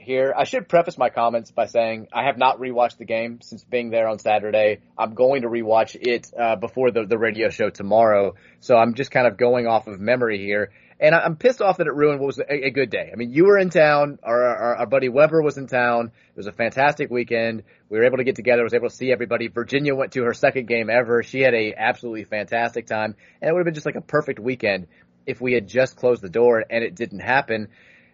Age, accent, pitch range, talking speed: 30-49, American, 110-140 Hz, 255 wpm